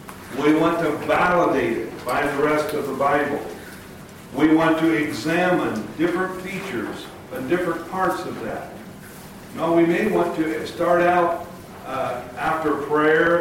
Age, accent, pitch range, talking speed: 50-69, American, 140-175 Hz, 145 wpm